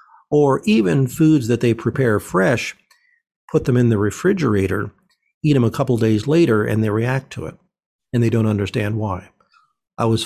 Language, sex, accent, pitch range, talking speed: English, male, American, 110-145 Hz, 175 wpm